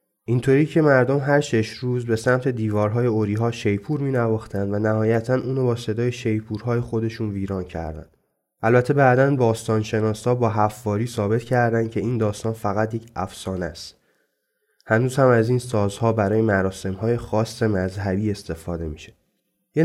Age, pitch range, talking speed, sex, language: 20-39, 105-125 Hz, 140 wpm, male, Persian